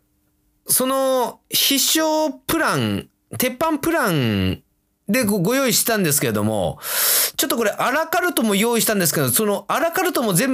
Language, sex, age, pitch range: Japanese, male, 30-49, 145-230 Hz